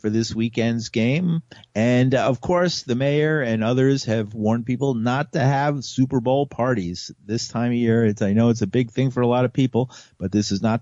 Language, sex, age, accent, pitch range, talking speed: English, male, 50-69, American, 105-135 Hz, 220 wpm